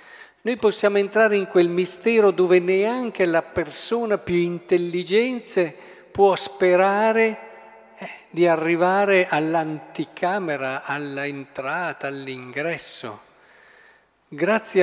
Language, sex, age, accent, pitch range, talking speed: Italian, male, 50-69, native, 145-190 Hz, 80 wpm